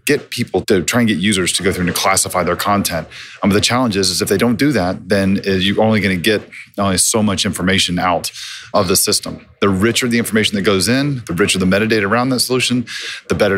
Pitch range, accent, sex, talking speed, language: 95-115 Hz, American, male, 245 wpm, English